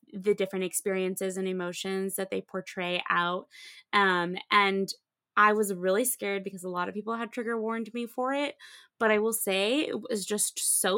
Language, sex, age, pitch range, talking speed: English, female, 20-39, 190-230 Hz, 185 wpm